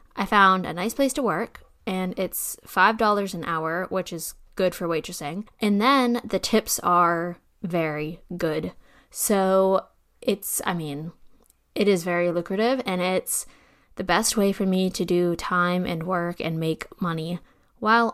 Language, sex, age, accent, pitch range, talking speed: English, female, 10-29, American, 175-215 Hz, 160 wpm